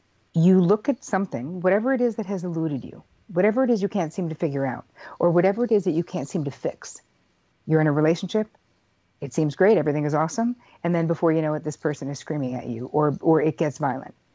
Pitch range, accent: 140-175 Hz, American